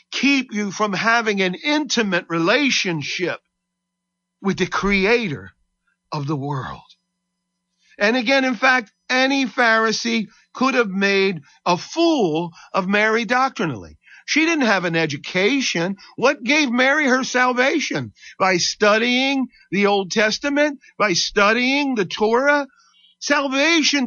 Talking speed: 115 wpm